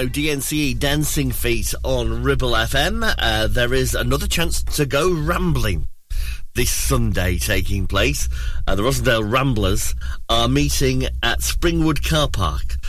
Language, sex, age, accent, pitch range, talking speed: English, male, 30-49, British, 90-130 Hz, 130 wpm